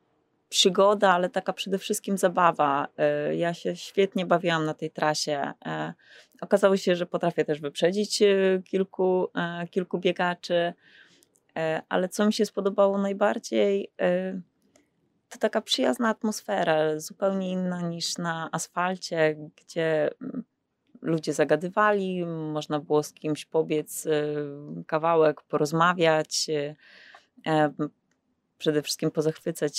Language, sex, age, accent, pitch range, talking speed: Polish, female, 20-39, native, 150-185 Hz, 100 wpm